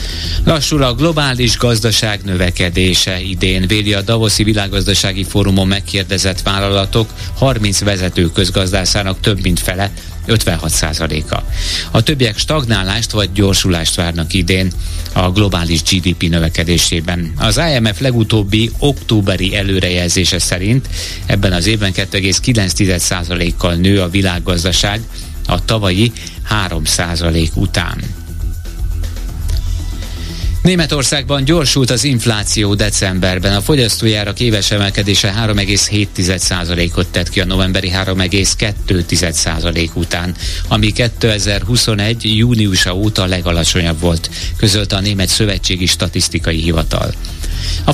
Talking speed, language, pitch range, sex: 100 wpm, Hungarian, 85-110 Hz, male